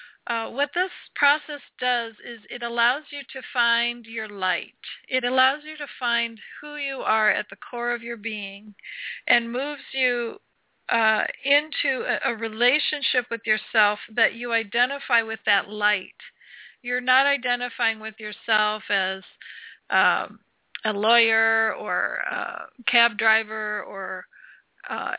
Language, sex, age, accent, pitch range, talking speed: English, female, 50-69, American, 215-255 Hz, 140 wpm